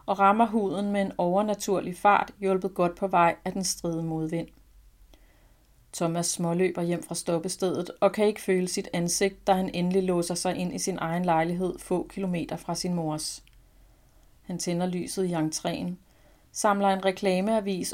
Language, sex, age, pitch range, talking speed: Danish, female, 40-59, 170-195 Hz, 165 wpm